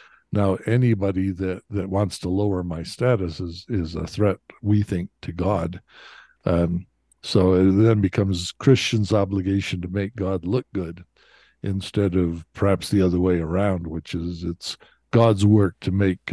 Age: 60-79